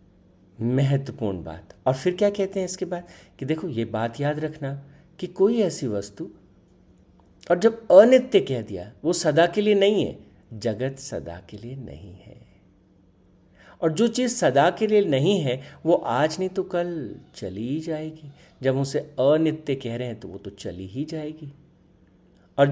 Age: 50-69